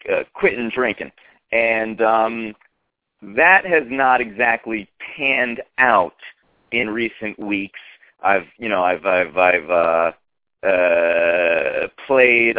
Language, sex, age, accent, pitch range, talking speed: English, male, 30-49, American, 90-110 Hz, 120 wpm